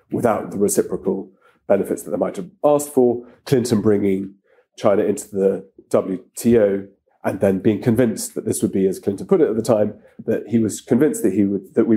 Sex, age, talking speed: male, 30-49, 200 wpm